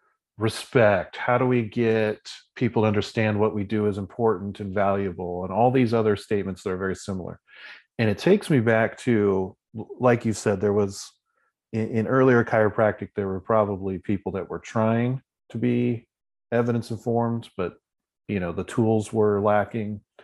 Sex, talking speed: male, 170 wpm